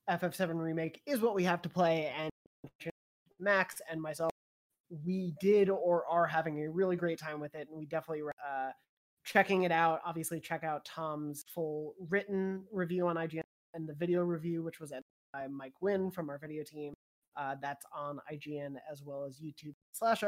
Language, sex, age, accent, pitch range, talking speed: English, male, 20-39, American, 150-180 Hz, 185 wpm